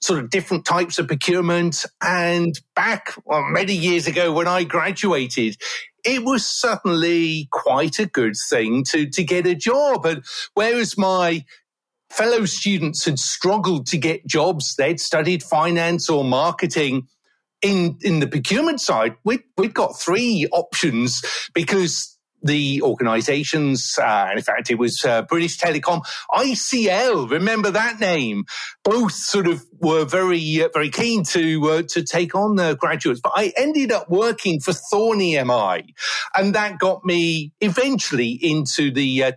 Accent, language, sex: British, English, male